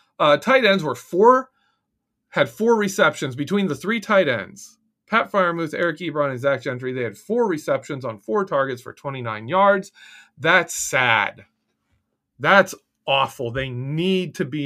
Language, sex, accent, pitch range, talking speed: English, male, American, 135-205 Hz, 155 wpm